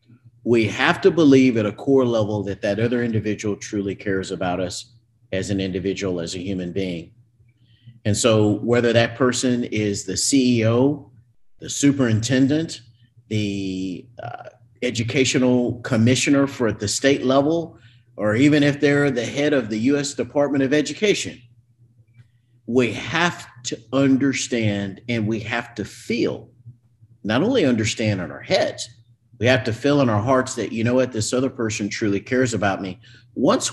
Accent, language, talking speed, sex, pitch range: American, English, 155 wpm, male, 105-125 Hz